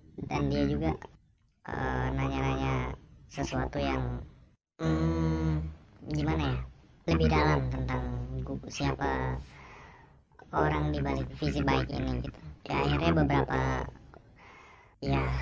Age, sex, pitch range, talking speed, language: 20-39, male, 65-75 Hz, 95 wpm, Indonesian